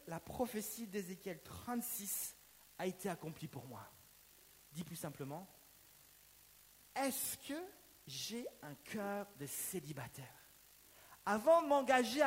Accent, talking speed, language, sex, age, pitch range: French, 110 wpm, French, male, 40-59, 215-275 Hz